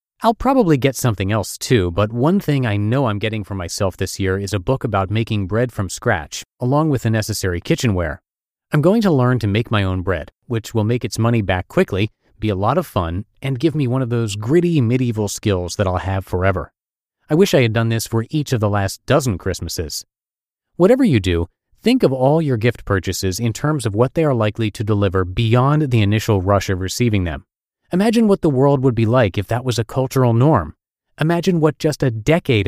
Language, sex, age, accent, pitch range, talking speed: English, male, 30-49, American, 100-140 Hz, 220 wpm